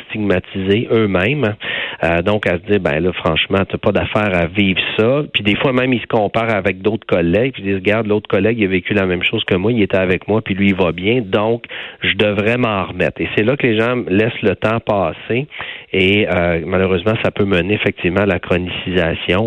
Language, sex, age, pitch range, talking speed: French, male, 40-59, 90-110 Hz, 230 wpm